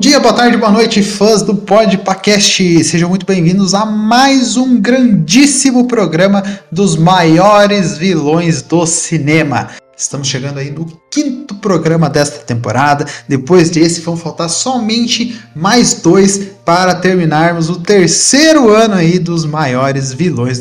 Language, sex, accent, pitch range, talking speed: Portuguese, male, Brazilian, 150-200 Hz, 135 wpm